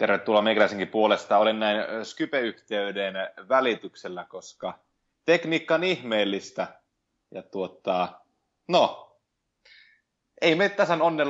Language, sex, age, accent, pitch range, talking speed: Finnish, male, 20-39, native, 105-155 Hz, 100 wpm